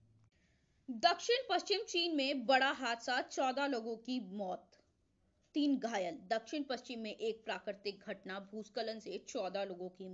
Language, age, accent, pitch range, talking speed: Indonesian, 20-39, Indian, 190-240 Hz, 135 wpm